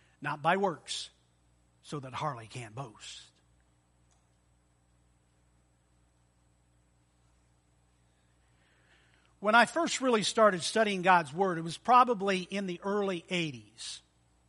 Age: 50-69